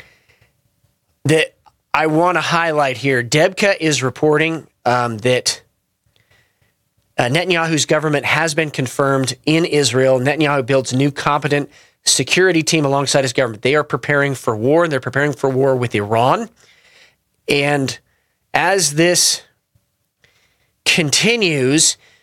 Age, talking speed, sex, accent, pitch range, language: 40-59, 120 wpm, male, American, 130-170 Hz, English